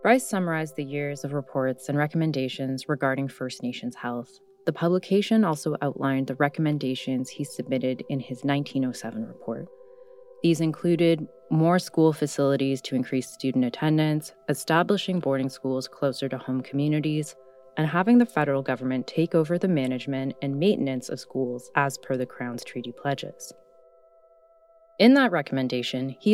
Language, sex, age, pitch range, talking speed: English, female, 20-39, 130-165 Hz, 145 wpm